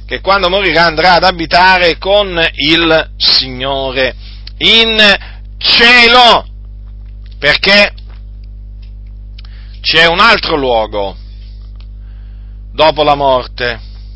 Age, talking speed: 40-59, 80 wpm